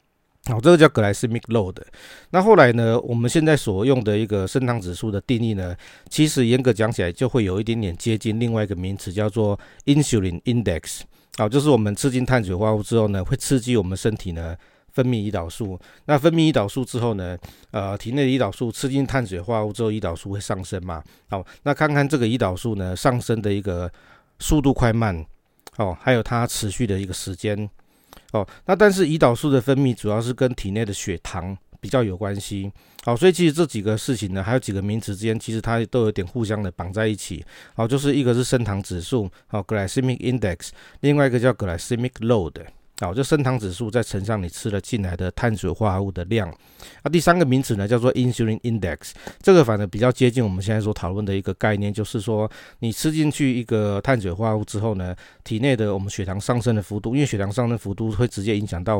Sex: male